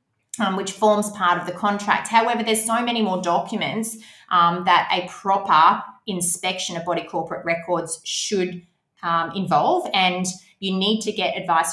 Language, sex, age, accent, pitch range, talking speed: English, female, 20-39, Australian, 170-210 Hz, 160 wpm